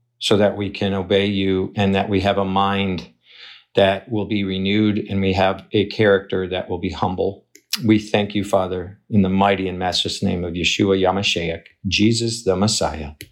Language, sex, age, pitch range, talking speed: English, male, 50-69, 100-145 Hz, 185 wpm